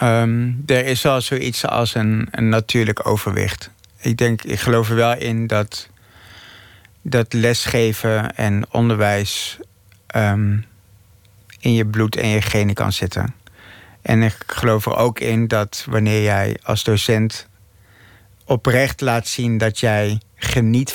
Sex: male